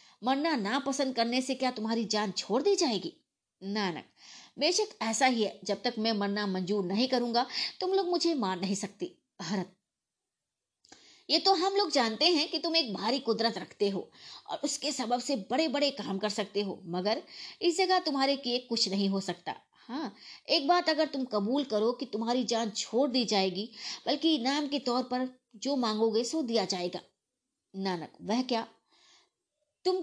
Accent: native